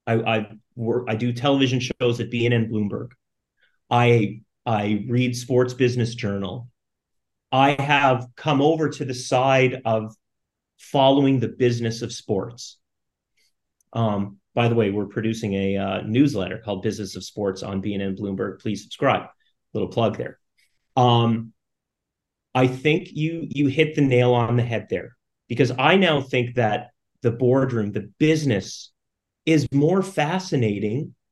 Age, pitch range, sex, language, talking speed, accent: 30-49, 115-145 Hz, male, English, 140 wpm, American